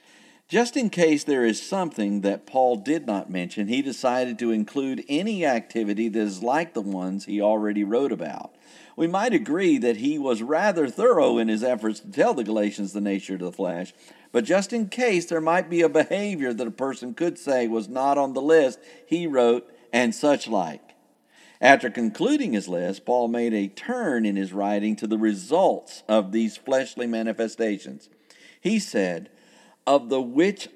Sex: male